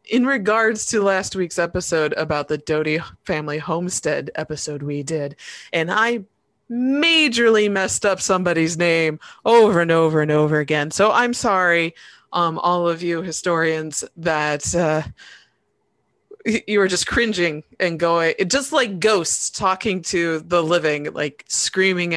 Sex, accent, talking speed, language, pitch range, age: female, American, 140 wpm, English, 160-220 Hz, 20-39